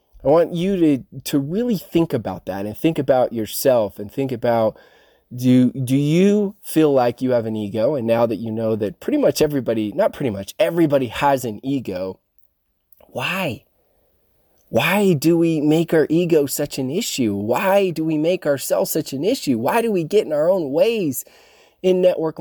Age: 20-39